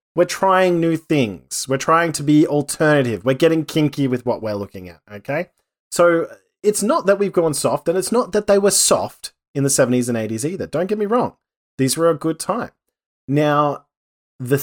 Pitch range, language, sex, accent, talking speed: 125-170 Hz, English, male, Australian, 200 wpm